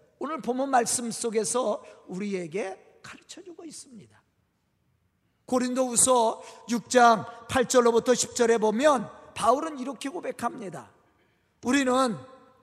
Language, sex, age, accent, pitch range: Korean, male, 40-59, native, 225-295 Hz